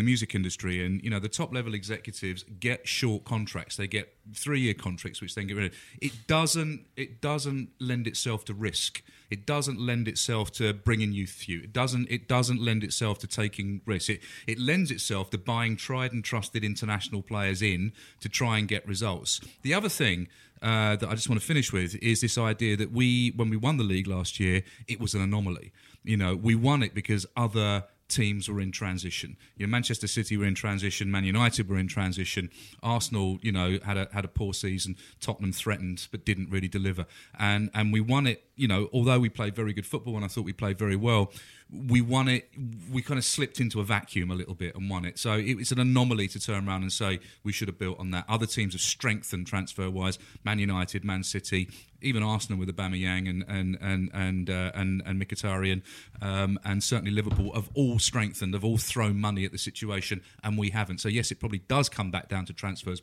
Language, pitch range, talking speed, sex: English, 95-115 Hz, 220 wpm, male